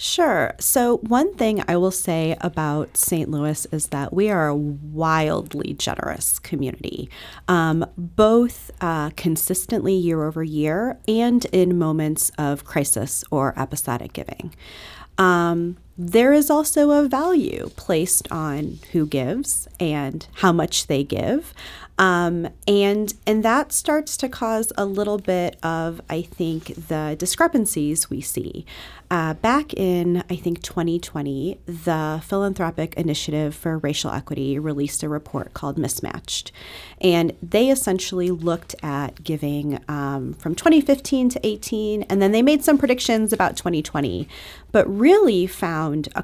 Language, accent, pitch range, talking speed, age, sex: English, American, 155-215 Hz, 135 wpm, 40-59, female